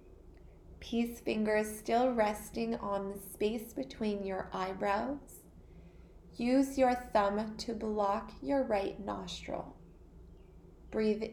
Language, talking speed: English, 100 wpm